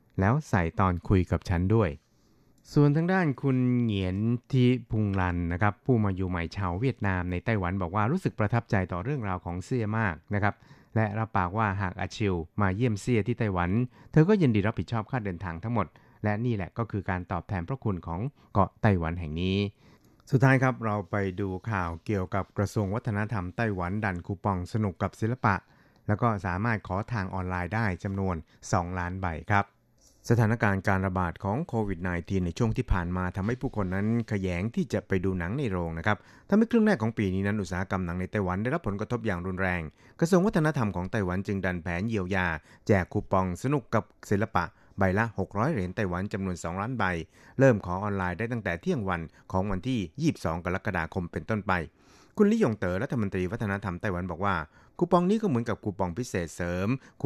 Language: Thai